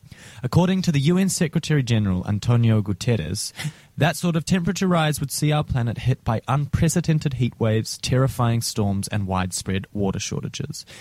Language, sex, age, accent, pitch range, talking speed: English, male, 20-39, Australian, 105-145 Hz, 145 wpm